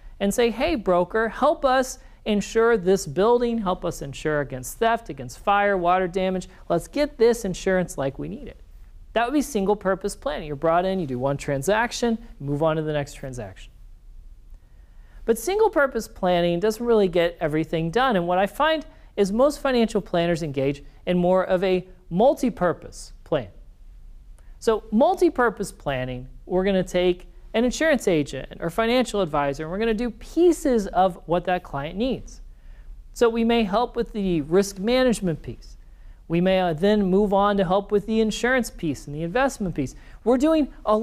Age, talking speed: 40-59, 175 wpm